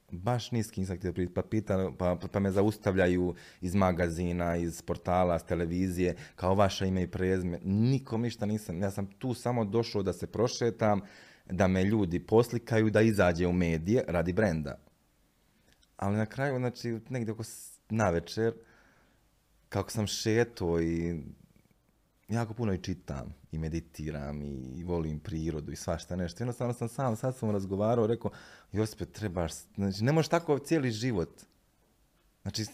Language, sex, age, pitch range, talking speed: Croatian, male, 30-49, 90-115 Hz, 145 wpm